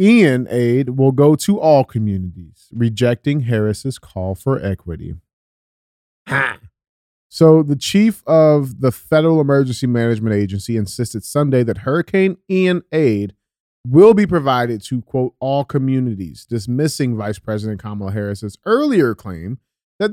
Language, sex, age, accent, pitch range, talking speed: English, male, 30-49, American, 105-145 Hz, 130 wpm